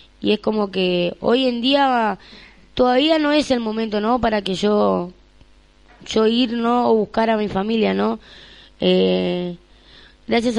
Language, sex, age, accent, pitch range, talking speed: Spanish, female, 20-39, Argentinian, 185-225 Hz, 155 wpm